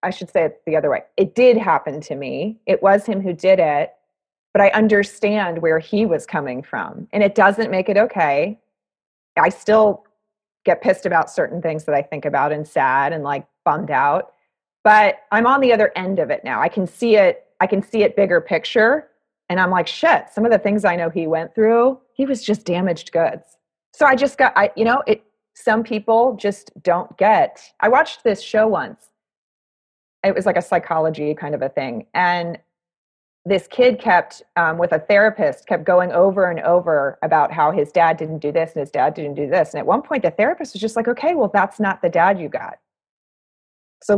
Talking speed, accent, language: 215 wpm, American, English